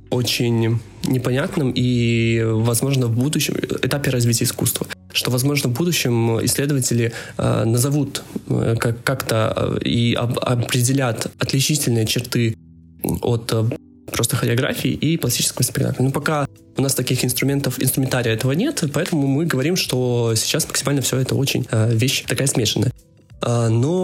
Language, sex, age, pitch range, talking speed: Russian, male, 20-39, 120-140 Hz, 120 wpm